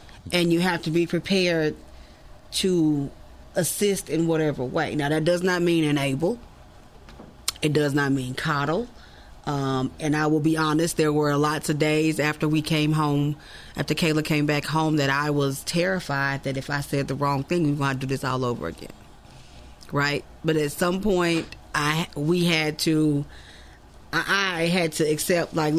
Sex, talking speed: female, 180 wpm